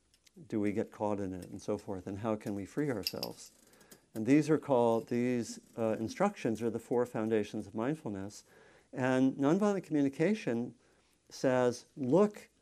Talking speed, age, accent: 155 wpm, 50-69, American